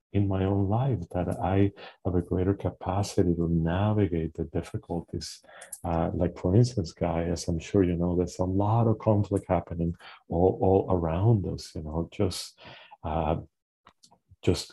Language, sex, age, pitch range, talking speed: English, male, 40-59, 85-100 Hz, 155 wpm